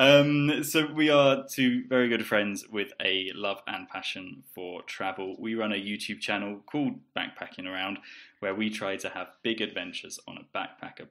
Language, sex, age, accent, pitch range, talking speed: English, male, 10-29, British, 100-125 Hz, 180 wpm